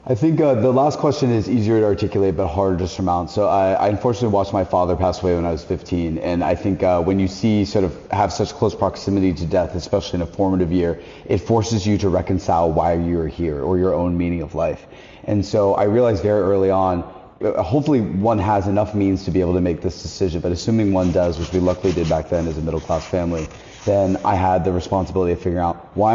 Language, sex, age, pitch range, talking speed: English, male, 30-49, 90-100 Hz, 240 wpm